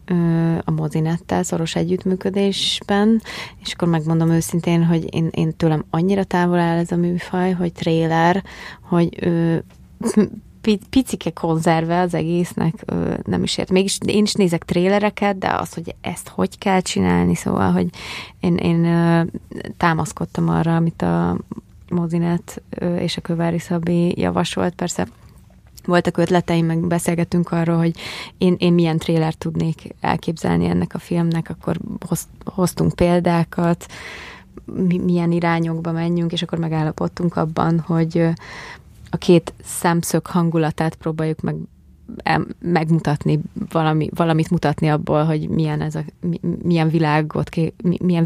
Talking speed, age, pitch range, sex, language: 125 wpm, 20-39, 160-175 Hz, female, Hungarian